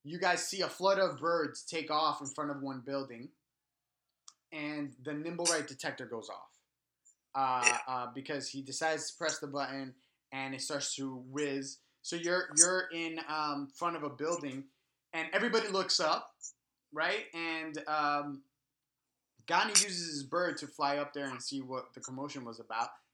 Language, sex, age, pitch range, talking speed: English, male, 20-39, 135-160 Hz, 170 wpm